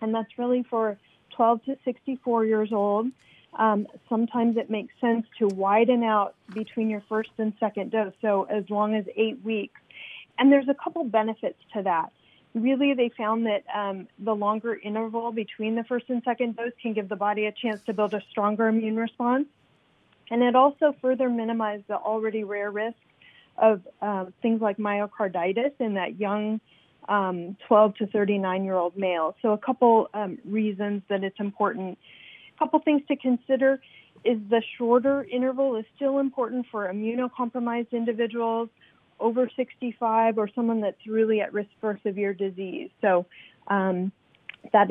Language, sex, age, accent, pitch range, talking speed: English, female, 40-59, American, 210-245 Hz, 160 wpm